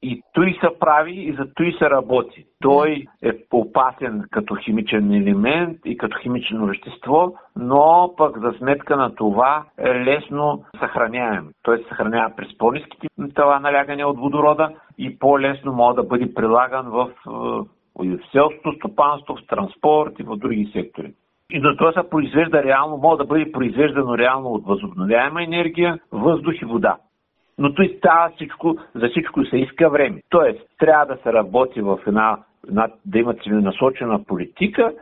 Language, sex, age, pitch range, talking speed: Bulgarian, male, 60-79, 115-160 Hz, 155 wpm